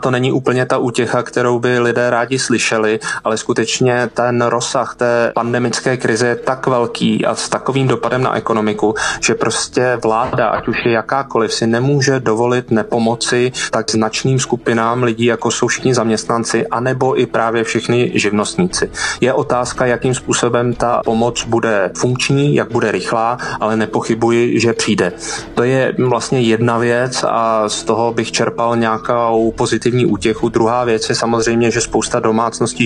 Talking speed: 155 wpm